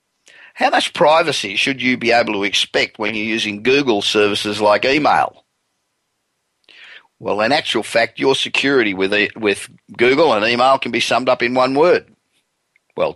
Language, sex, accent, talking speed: English, male, Australian, 155 wpm